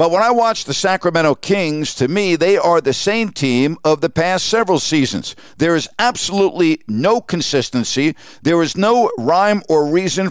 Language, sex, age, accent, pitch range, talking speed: English, male, 50-69, American, 150-195 Hz, 175 wpm